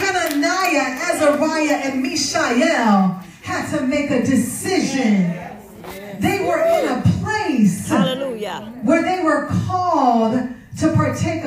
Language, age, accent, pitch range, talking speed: English, 40-59, American, 205-295 Hz, 105 wpm